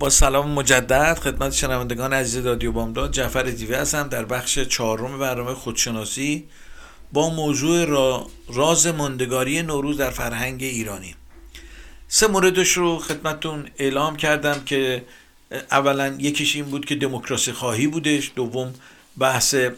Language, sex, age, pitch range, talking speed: Persian, male, 50-69, 130-160 Hz, 135 wpm